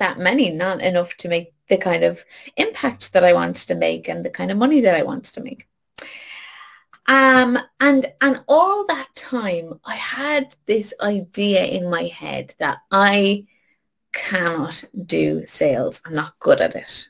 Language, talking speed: English, 170 wpm